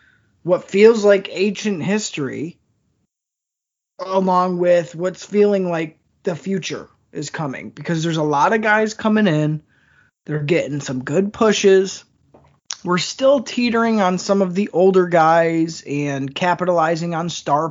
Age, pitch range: 20-39, 155-200 Hz